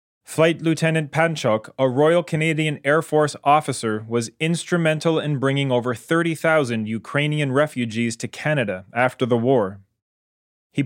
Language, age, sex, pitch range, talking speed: English, 20-39, male, 120-150 Hz, 125 wpm